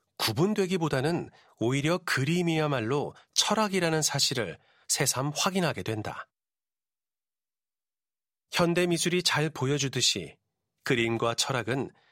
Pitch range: 125-170 Hz